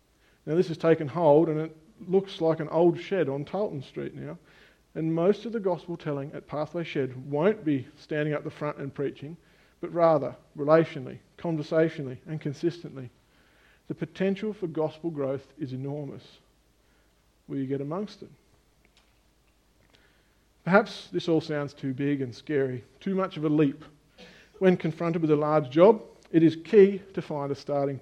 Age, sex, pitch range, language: 50-69, male, 140-180 Hz, English